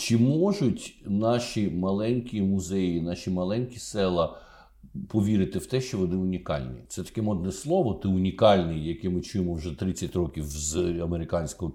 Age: 50-69